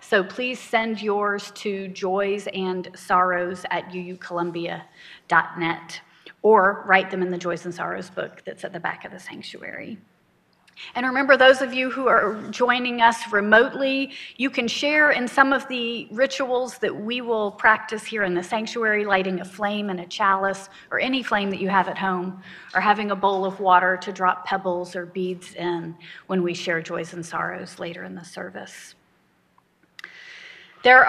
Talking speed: 170 wpm